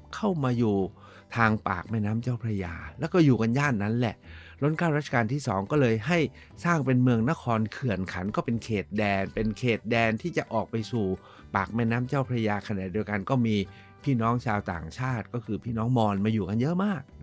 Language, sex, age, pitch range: Thai, male, 60-79, 100-125 Hz